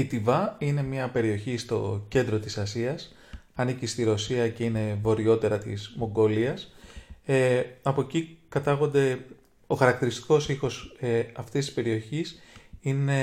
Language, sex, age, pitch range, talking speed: English, male, 30-49, 110-140 Hz, 125 wpm